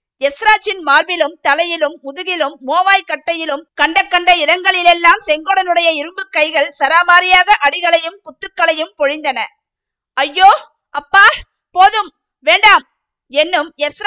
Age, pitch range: 50-69, 295-375 Hz